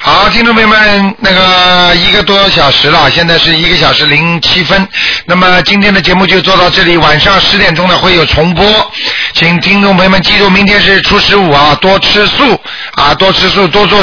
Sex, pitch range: male, 165-200 Hz